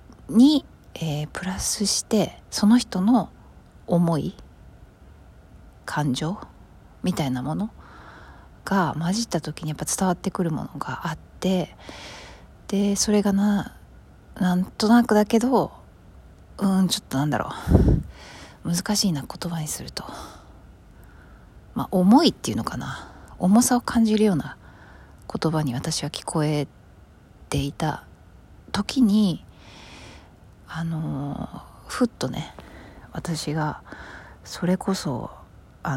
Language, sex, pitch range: Japanese, female, 140-195 Hz